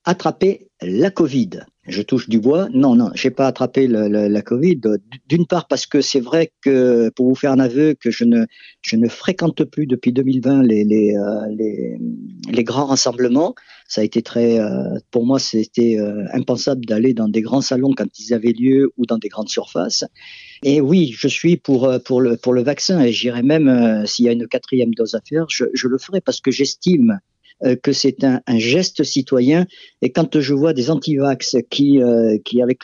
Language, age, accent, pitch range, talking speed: French, 50-69, French, 120-145 Hz, 200 wpm